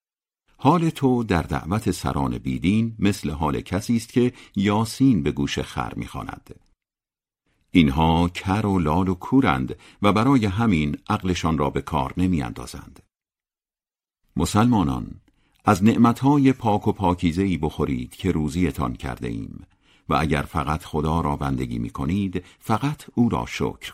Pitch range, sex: 80-110 Hz, male